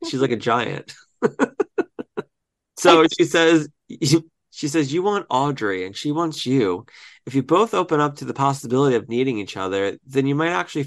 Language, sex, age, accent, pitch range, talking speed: English, male, 30-49, American, 115-150 Hz, 175 wpm